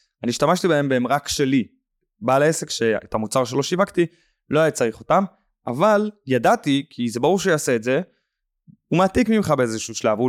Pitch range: 125-180 Hz